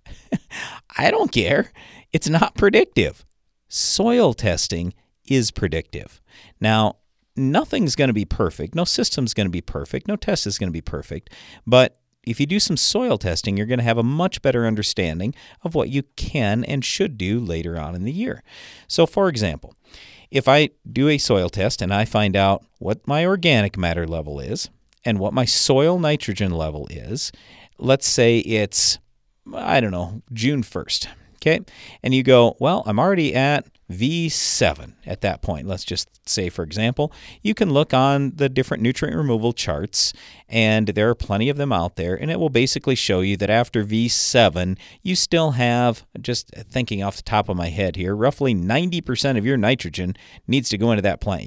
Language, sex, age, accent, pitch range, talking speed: English, male, 50-69, American, 95-135 Hz, 180 wpm